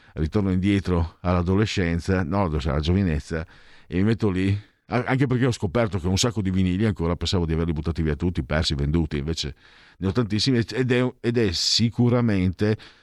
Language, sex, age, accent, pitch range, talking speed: Italian, male, 50-69, native, 85-120 Hz, 175 wpm